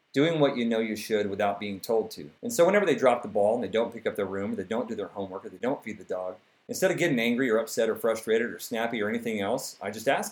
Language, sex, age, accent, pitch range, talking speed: English, male, 40-59, American, 105-145 Hz, 300 wpm